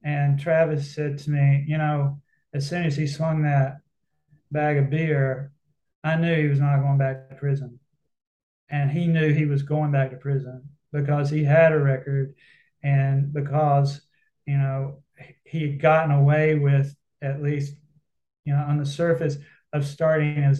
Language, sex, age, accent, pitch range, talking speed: English, male, 30-49, American, 140-155 Hz, 170 wpm